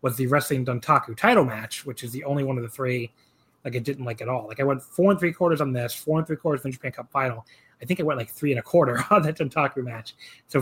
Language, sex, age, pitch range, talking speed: English, male, 30-49, 130-155 Hz, 290 wpm